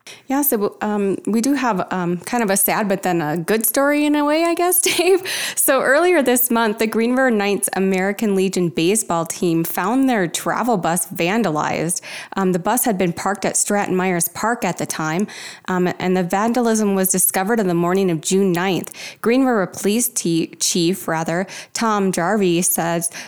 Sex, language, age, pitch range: female, English, 20-39, 175-215 Hz